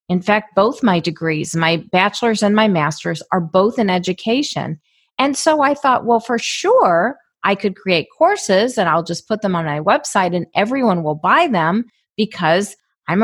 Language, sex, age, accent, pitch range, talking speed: English, female, 40-59, American, 175-235 Hz, 180 wpm